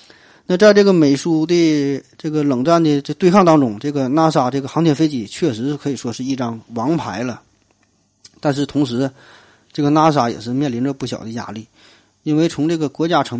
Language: Chinese